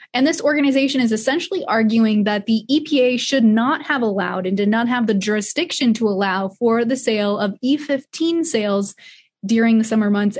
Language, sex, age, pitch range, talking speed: English, female, 20-39, 205-245 Hz, 180 wpm